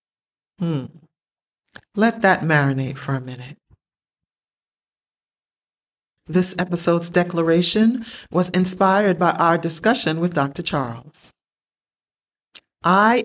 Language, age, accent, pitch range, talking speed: English, 40-59, American, 140-185 Hz, 85 wpm